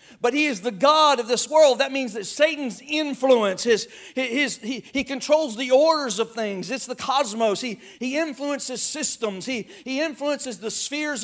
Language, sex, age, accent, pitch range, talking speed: English, male, 50-69, American, 235-290 Hz, 185 wpm